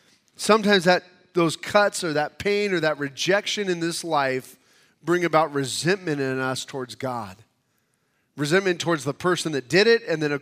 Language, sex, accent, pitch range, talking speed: English, male, American, 130-180 Hz, 175 wpm